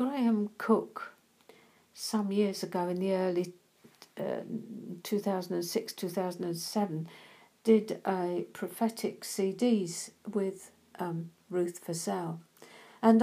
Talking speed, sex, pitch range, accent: 85 wpm, female, 180-215 Hz, British